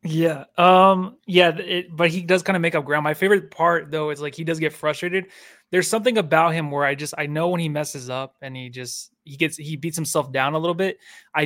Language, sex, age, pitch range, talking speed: English, male, 20-39, 145-180 Hz, 250 wpm